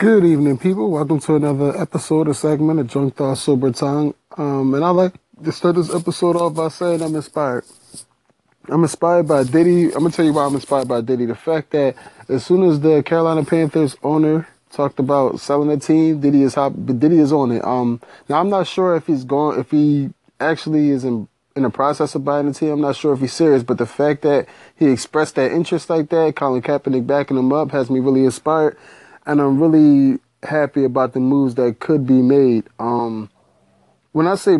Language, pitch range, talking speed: English, 125-155 Hz, 210 wpm